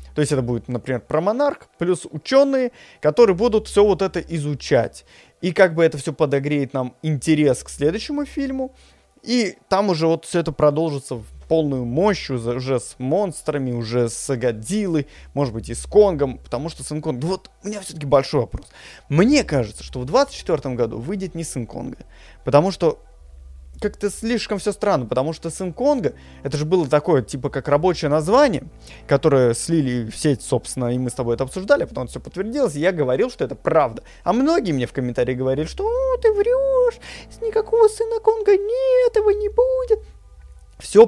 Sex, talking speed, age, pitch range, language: male, 185 wpm, 20-39, 130-210 Hz, Russian